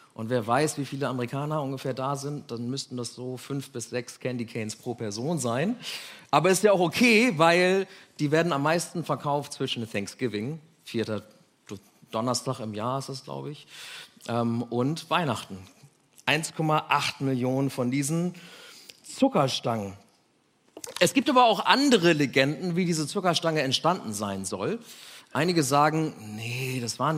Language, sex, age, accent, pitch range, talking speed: German, male, 40-59, German, 125-175 Hz, 145 wpm